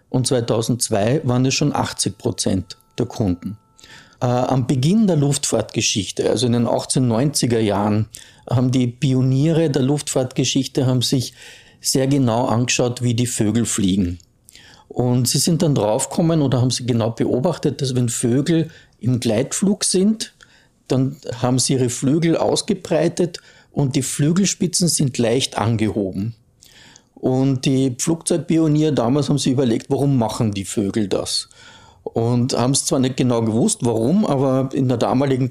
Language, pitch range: German, 120-140 Hz